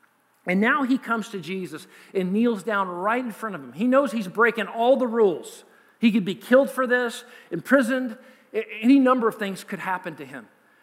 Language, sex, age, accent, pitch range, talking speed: English, male, 40-59, American, 210-265 Hz, 200 wpm